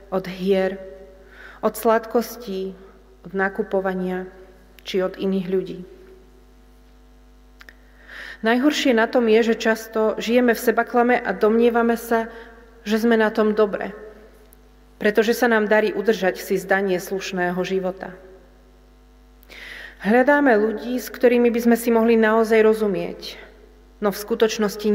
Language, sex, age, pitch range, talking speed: Slovak, female, 30-49, 190-225 Hz, 120 wpm